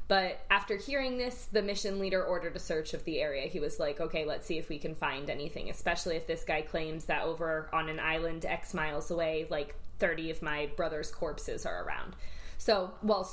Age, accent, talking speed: 20-39, American, 210 wpm